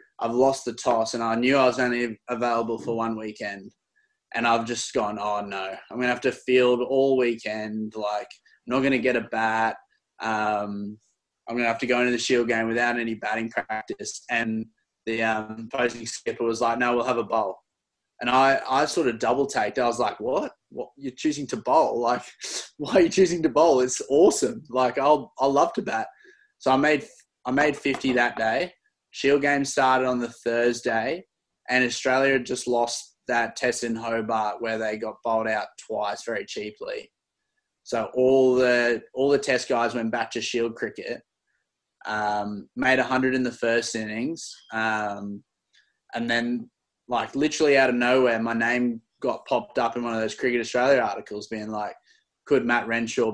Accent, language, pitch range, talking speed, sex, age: Australian, English, 115-130 Hz, 190 wpm, male, 20-39